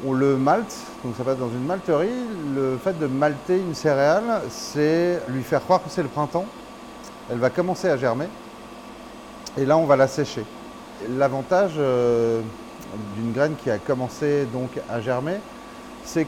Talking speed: 160 wpm